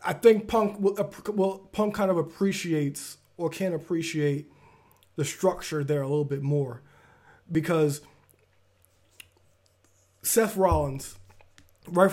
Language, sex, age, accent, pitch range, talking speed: English, male, 20-39, American, 140-180 Hz, 115 wpm